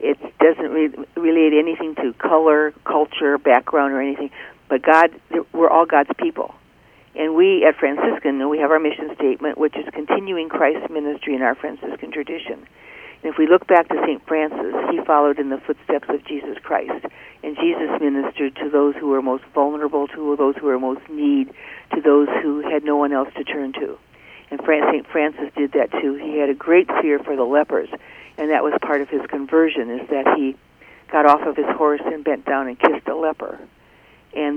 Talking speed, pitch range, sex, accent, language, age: 200 wpm, 145-165 Hz, female, American, English, 60-79